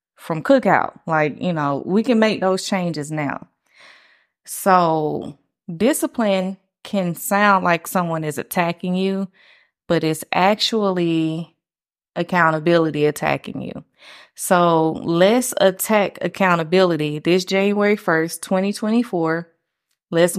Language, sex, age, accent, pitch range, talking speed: English, female, 20-39, American, 170-205 Hz, 105 wpm